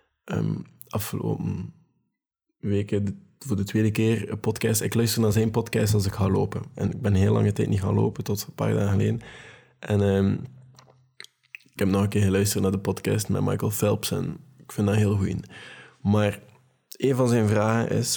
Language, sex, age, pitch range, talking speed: Dutch, male, 20-39, 100-115 Hz, 200 wpm